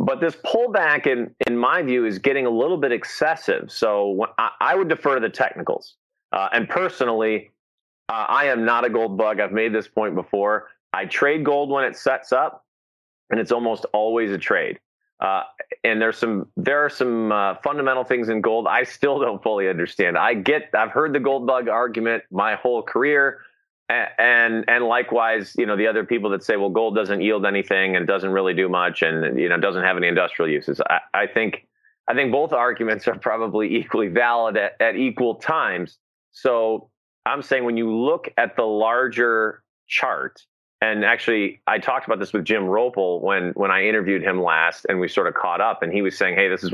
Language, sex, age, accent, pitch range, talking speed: English, male, 30-49, American, 105-135 Hz, 200 wpm